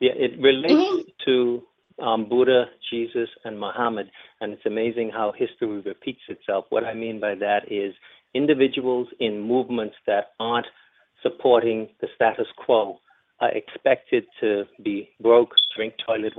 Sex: male